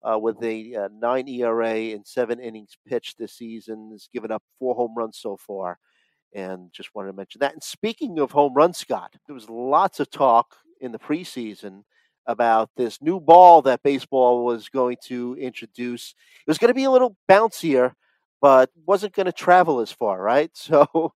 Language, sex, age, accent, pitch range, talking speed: English, male, 40-59, American, 120-160 Hz, 190 wpm